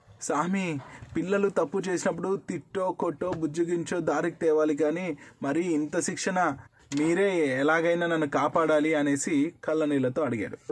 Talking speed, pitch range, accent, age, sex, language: 110 wpm, 120-160 Hz, native, 20-39, male, Telugu